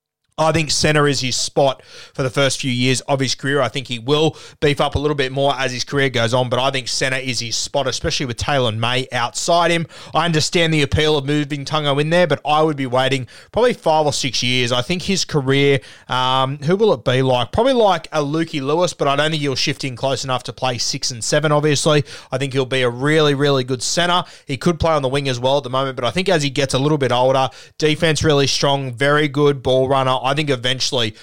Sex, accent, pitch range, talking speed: male, Australian, 125-150 Hz, 255 wpm